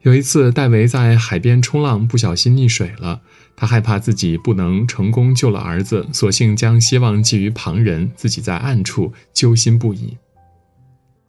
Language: Chinese